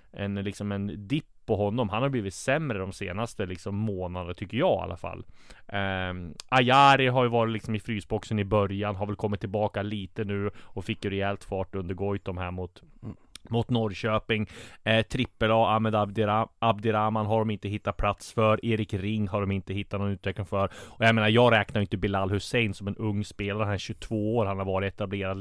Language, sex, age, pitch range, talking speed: Swedish, male, 20-39, 95-115 Hz, 200 wpm